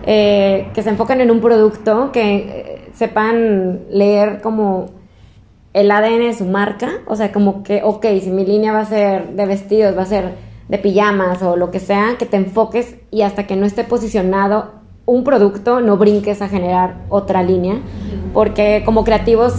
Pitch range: 195-220 Hz